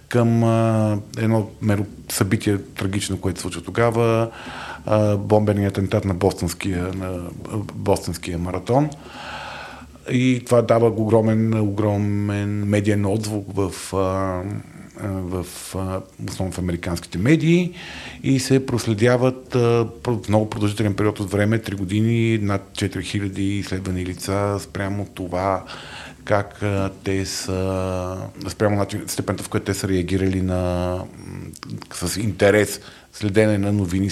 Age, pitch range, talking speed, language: 40-59, 95-115 Hz, 115 wpm, Bulgarian